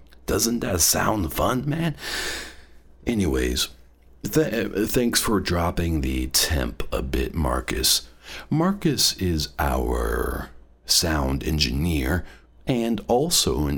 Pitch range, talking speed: 65-95 Hz, 95 wpm